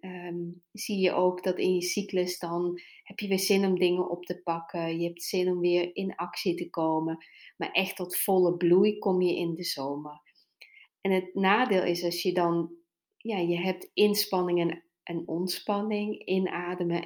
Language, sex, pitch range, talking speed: Dutch, female, 165-195 Hz, 175 wpm